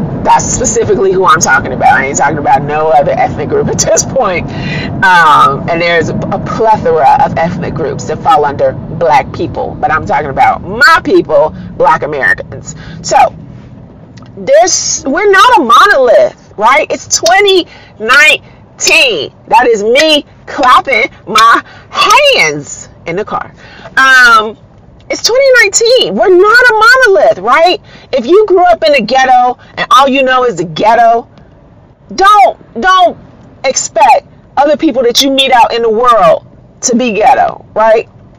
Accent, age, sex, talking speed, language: American, 40-59, female, 150 wpm, English